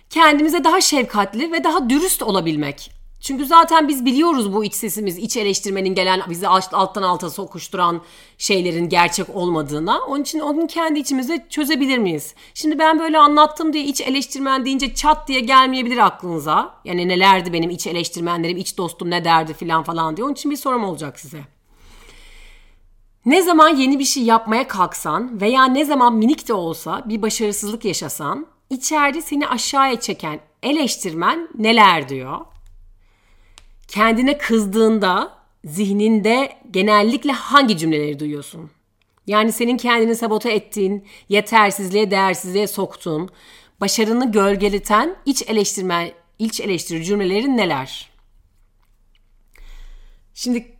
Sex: female